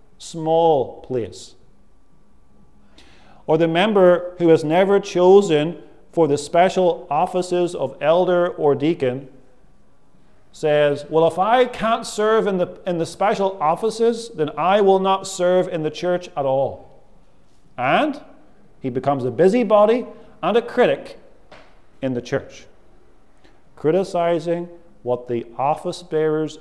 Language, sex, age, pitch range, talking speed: English, male, 40-59, 120-180 Hz, 120 wpm